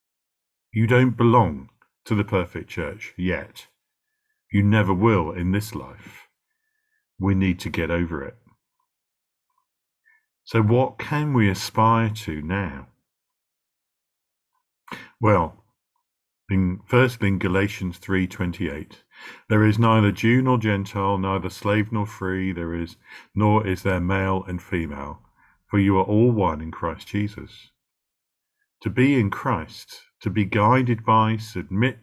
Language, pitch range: English, 95-120 Hz